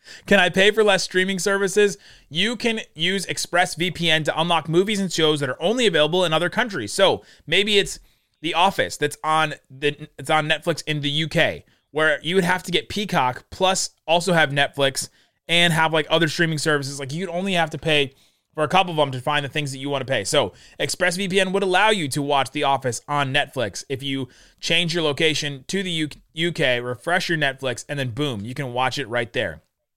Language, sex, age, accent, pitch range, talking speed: English, male, 30-49, American, 135-170 Hz, 210 wpm